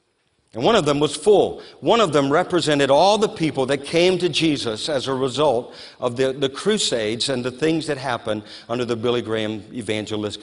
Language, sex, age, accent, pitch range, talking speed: English, male, 50-69, American, 110-150 Hz, 195 wpm